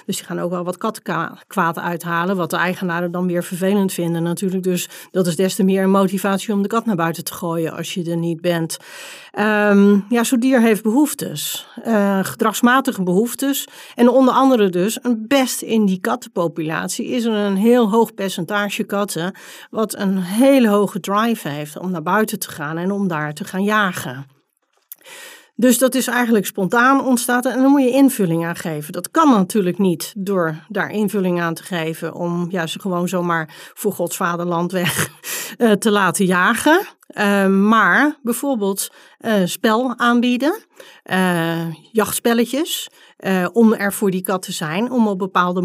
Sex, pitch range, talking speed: female, 175-230 Hz, 165 wpm